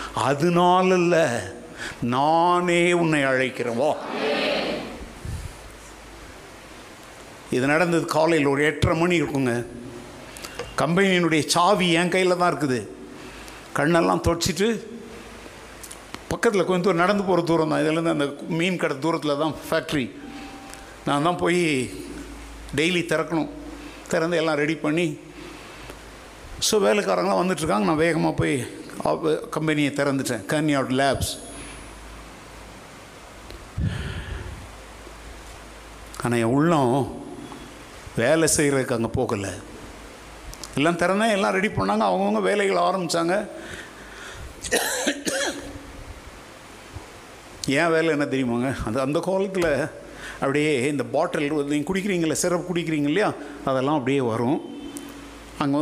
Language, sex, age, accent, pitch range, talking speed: Tamil, male, 60-79, native, 140-175 Hz, 90 wpm